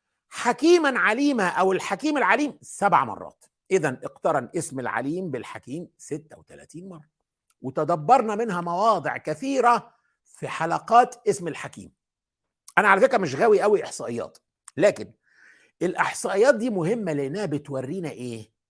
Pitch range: 165-245 Hz